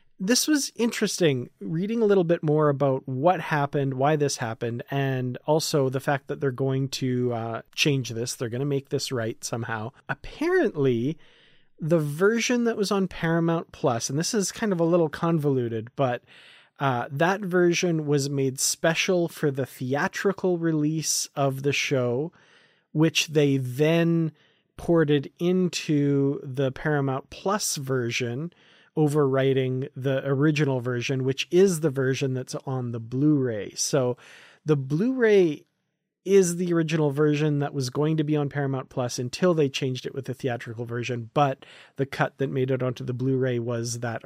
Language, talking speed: English, 160 wpm